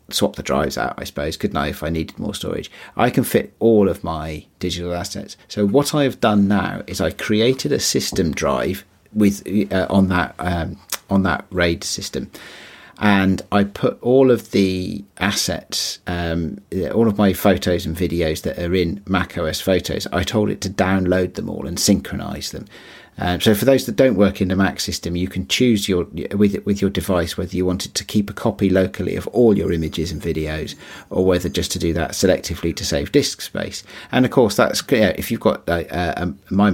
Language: English